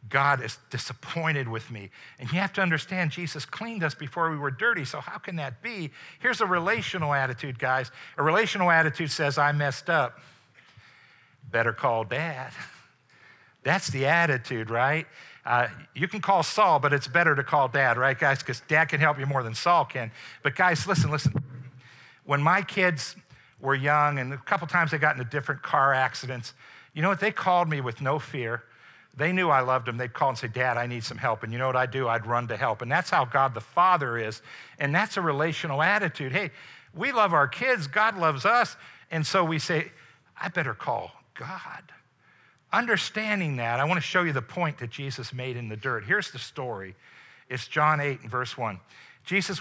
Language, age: English, 60-79